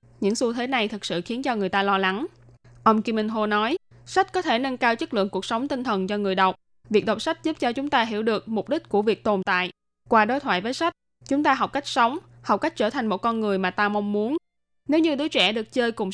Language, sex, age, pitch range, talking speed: Vietnamese, female, 10-29, 205-260 Hz, 270 wpm